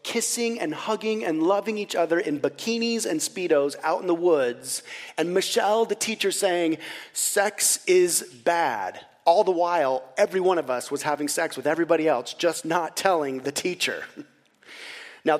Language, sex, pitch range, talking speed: English, male, 145-200 Hz, 165 wpm